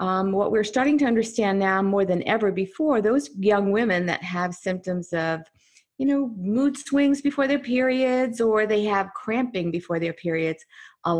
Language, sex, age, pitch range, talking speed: English, female, 50-69, 170-225 Hz, 175 wpm